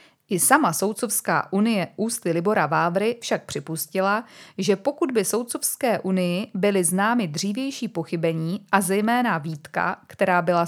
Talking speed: 130 wpm